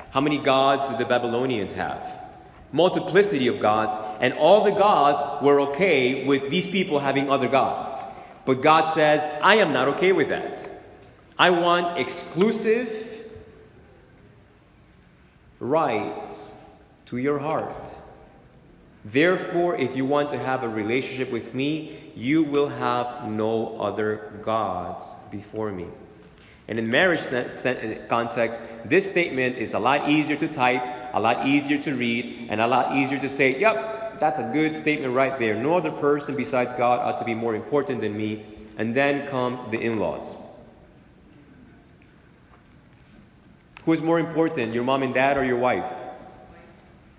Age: 30-49